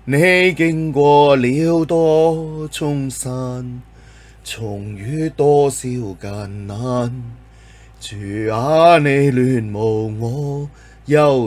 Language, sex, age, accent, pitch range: Chinese, male, 20-39, native, 125-165 Hz